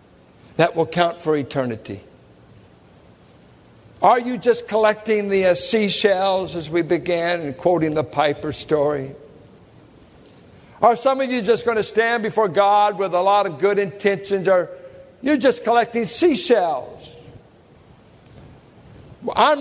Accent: American